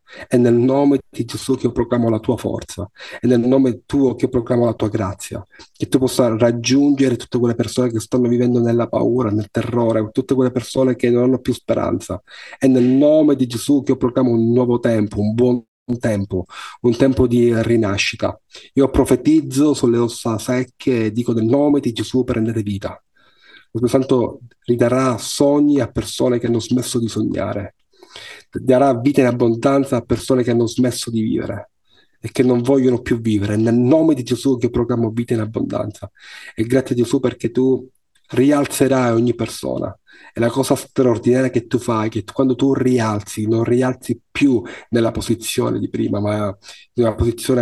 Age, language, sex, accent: 40-59, Italian, male, native